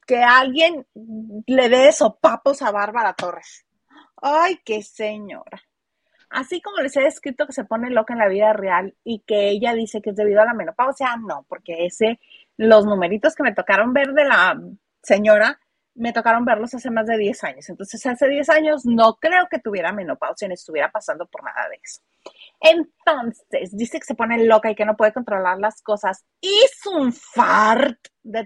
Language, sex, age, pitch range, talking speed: Spanish, female, 30-49, 215-310 Hz, 185 wpm